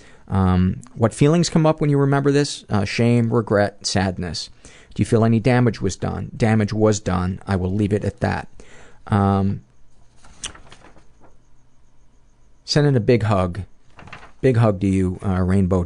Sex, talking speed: male, 155 wpm